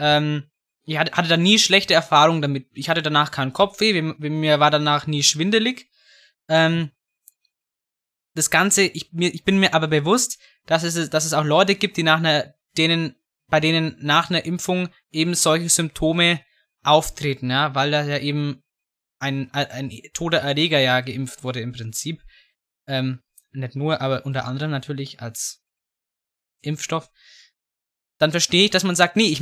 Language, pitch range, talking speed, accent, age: German, 145-175 Hz, 150 wpm, German, 20-39